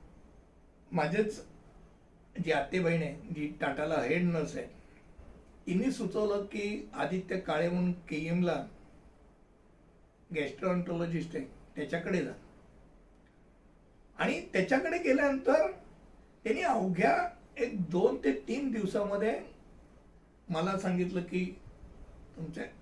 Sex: male